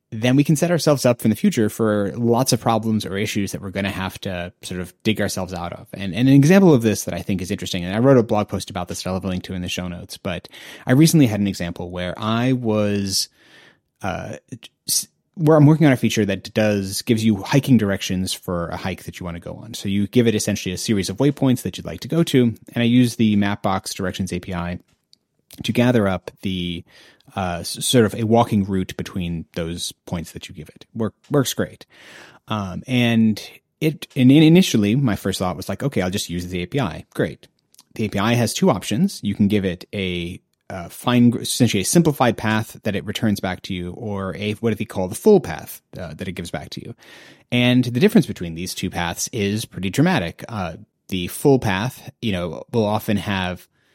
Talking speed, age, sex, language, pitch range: 225 wpm, 30-49, male, English, 95-120 Hz